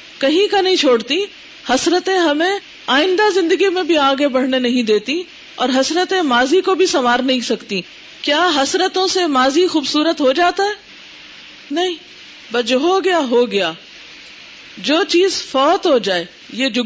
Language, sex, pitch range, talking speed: Urdu, female, 220-325 Hz, 155 wpm